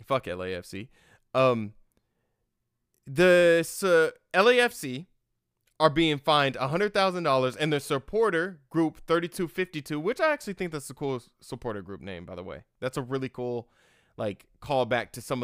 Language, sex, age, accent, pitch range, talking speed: English, male, 20-39, American, 120-165 Hz, 140 wpm